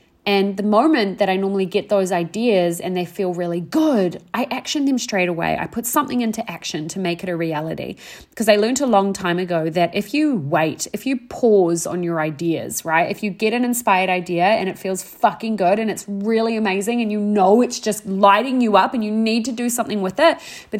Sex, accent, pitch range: female, Australian, 175-230 Hz